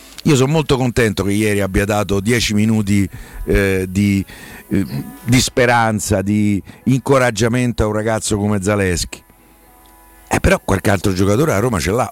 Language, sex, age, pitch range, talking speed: Italian, male, 50-69, 100-135 Hz, 160 wpm